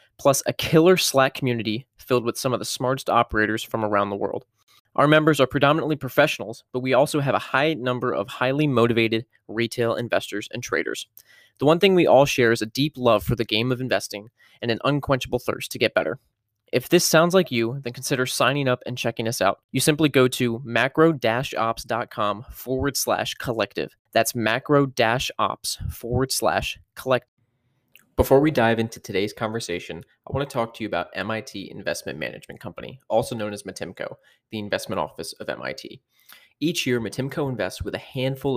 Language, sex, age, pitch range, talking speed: English, male, 20-39, 110-135 Hz, 180 wpm